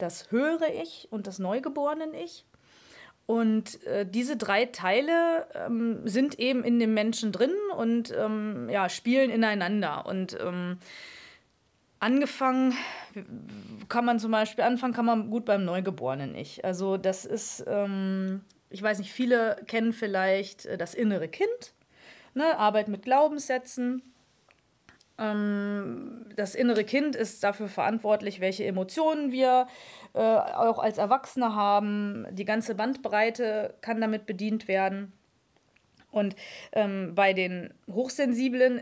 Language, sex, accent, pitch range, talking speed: German, female, German, 200-245 Hz, 120 wpm